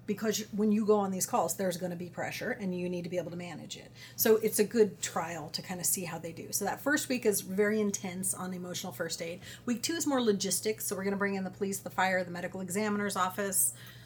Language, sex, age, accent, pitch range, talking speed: English, female, 30-49, American, 175-205 Hz, 270 wpm